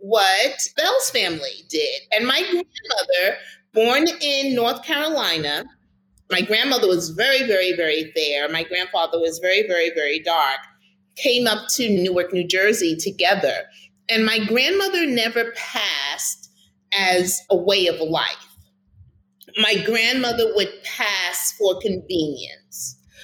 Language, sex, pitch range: English, female, 175-235 Hz